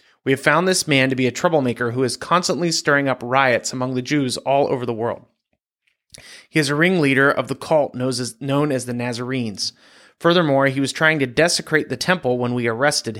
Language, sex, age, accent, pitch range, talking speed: English, male, 30-49, American, 125-155 Hz, 200 wpm